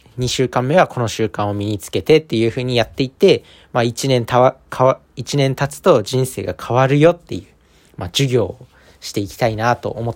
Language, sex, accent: Japanese, male, native